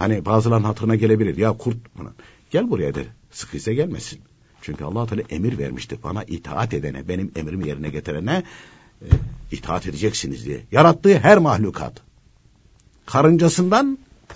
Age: 60-79